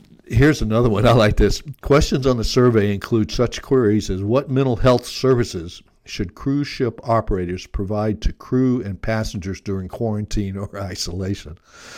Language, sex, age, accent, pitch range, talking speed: English, male, 60-79, American, 100-125 Hz, 155 wpm